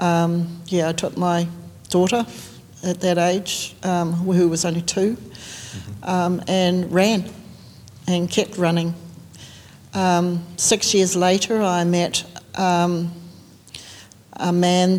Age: 60-79